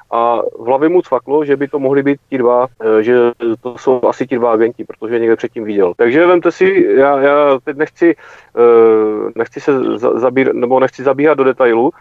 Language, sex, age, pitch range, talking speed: Czech, male, 40-59, 115-140 Hz, 200 wpm